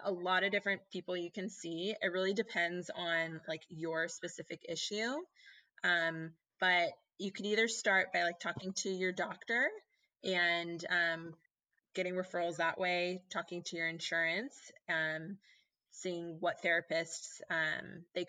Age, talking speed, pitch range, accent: 20-39, 145 wpm, 165-195 Hz, American